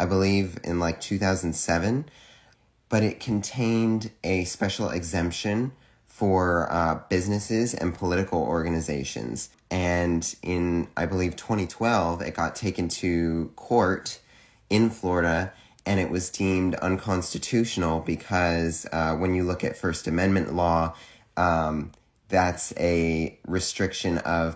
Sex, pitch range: male, 85-100 Hz